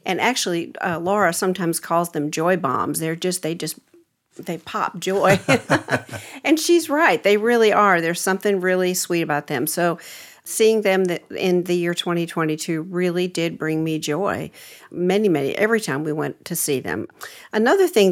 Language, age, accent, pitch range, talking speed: English, 50-69, American, 160-195 Hz, 170 wpm